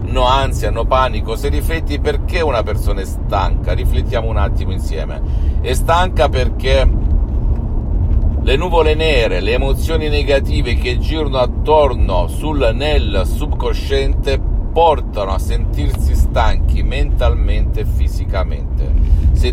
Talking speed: 115 wpm